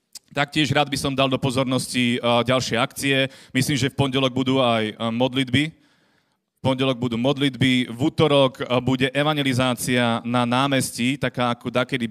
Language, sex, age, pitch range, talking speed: Slovak, male, 30-49, 120-140 Hz, 140 wpm